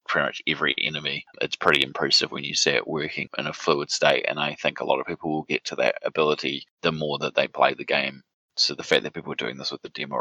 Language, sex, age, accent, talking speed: English, male, 20-39, Australian, 270 wpm